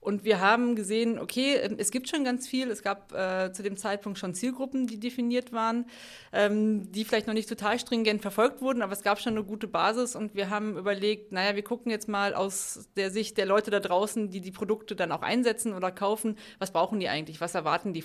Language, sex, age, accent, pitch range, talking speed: German, female, 30-49, German, 200-230 Hz, 225 wpm